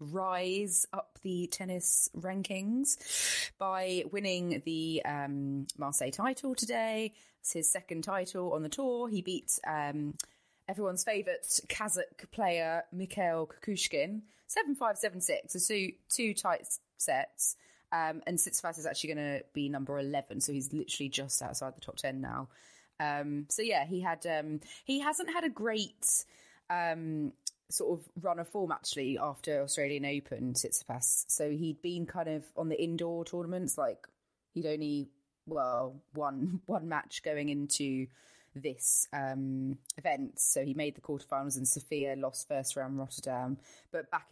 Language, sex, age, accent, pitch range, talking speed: English, female, 20-39, British, 145-200 Hz, 150 wpm